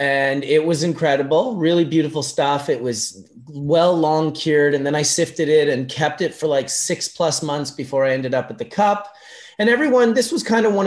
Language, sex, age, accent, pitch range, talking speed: English, male, 30-49, American, 135-175 Hz, 215 wpm